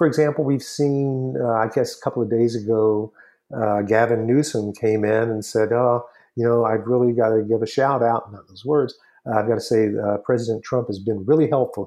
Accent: American